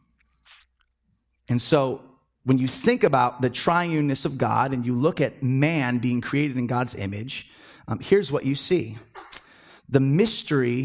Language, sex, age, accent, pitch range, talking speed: English, male, 30-49, American, 130-200 Hz, 150 wpm